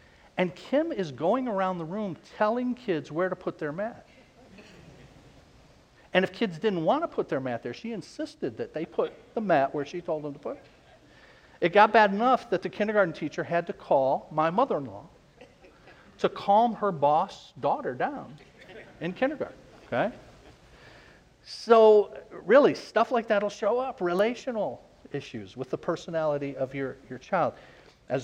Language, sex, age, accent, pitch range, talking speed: English, male, 50-69, American, 145-205 Hz, 165 wpm